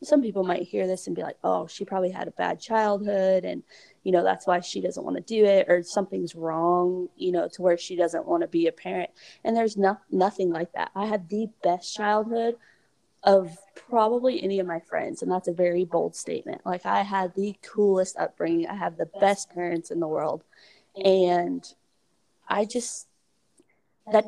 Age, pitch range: 20-39, 180-215 Hz